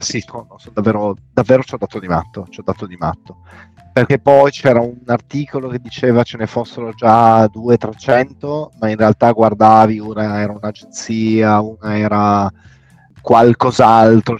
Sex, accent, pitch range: male, native, 105-120 Hz